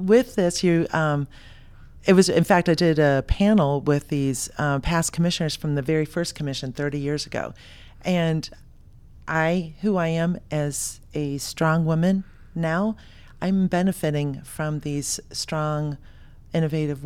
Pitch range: 140-170 Hz